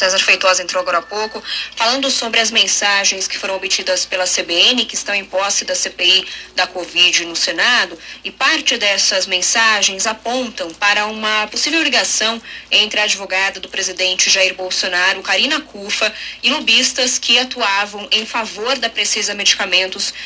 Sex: female